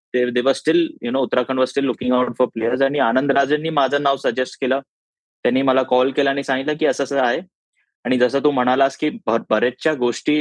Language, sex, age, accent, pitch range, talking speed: Marathi, male, 20-39, native, 115-140 Hz, 230 wpm